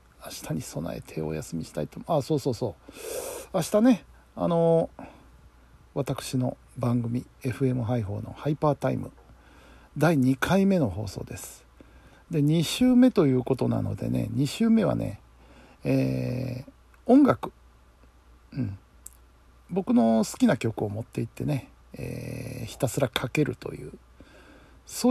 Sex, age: male, 60-79